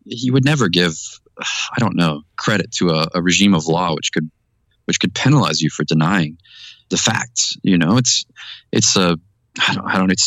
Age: 20-39